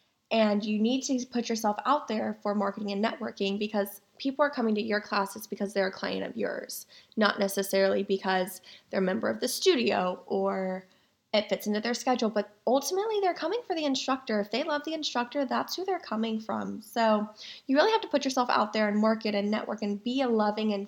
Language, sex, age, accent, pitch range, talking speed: English, female, 10-29, American, 205-240 Hz, 215 wpm